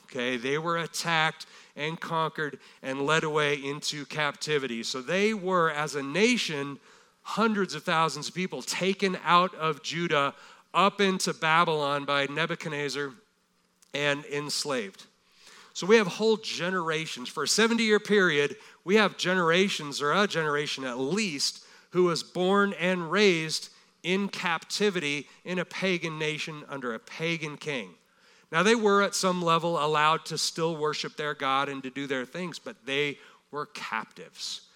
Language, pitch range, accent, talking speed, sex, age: English, 145-185 Hz, American, 150 wpm, male, 50-69